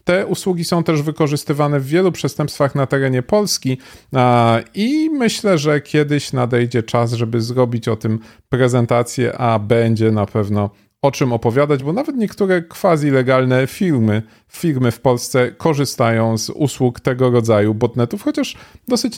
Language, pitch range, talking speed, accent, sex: Polish, 120-150 Hz, 145 wpm, native, male